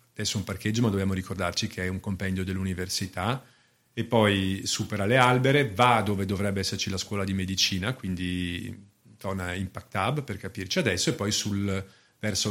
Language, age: Italian, 40-59